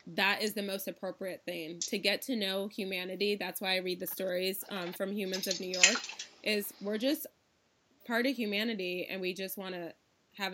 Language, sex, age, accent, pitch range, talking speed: English, female, 20-39, American, 185-230 Hz, 200 wpm